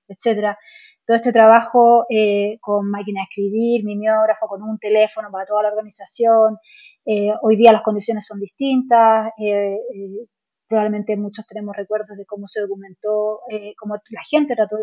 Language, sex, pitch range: Spanish, female, 210-235 Hz